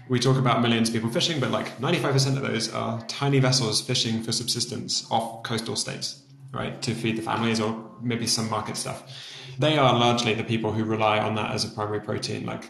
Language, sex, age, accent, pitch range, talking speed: English, male, 20-39, British, 110-130 Hz, 215 wpm